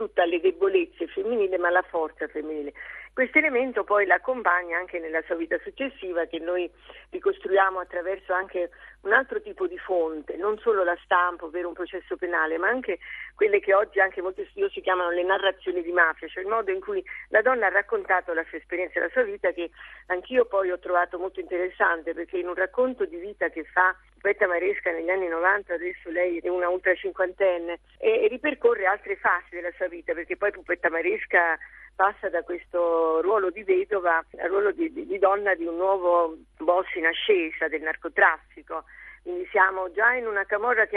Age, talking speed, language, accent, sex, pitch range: 50-69, 185 wpm, Italian, native, female, 175-240 Hz